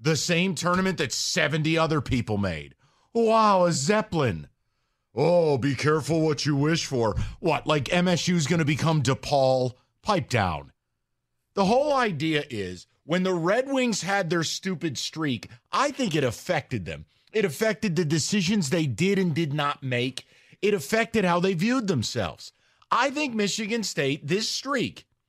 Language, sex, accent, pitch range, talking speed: English, male, American, 145-230 Hz, 155 wpm